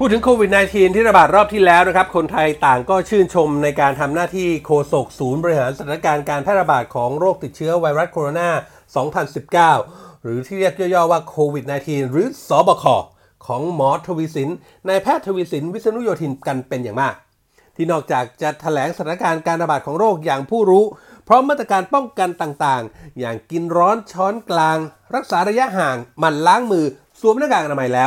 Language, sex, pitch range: Thai, male, 150-205 Hz